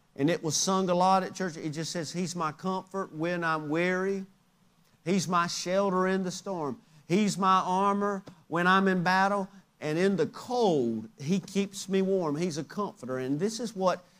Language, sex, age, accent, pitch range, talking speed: English, male, 50-69, American, 175-230 Hz, 190 wpm